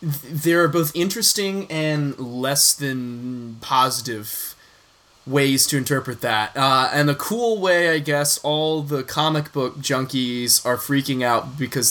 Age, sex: 20-39, male